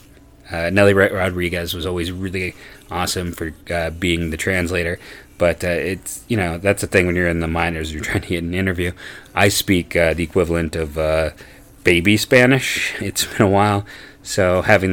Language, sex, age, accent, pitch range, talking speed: English, male, 30-49, American, 85-100 Hz, 185 wpm